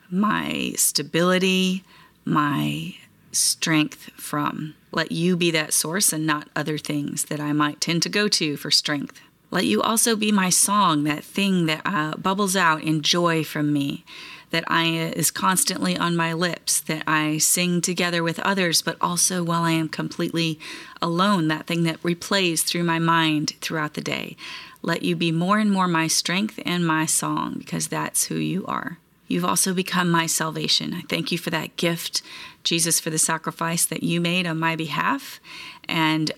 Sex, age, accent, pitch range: female, 30-49, American, 155-175 Hz